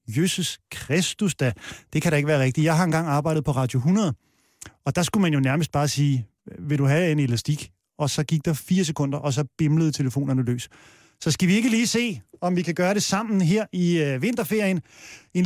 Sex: male